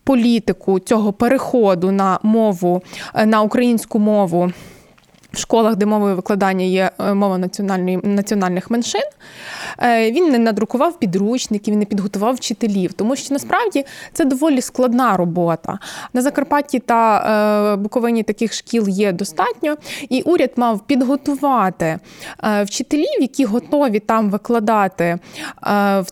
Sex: female